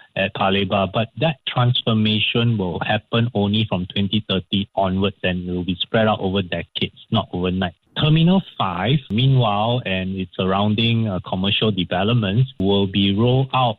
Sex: male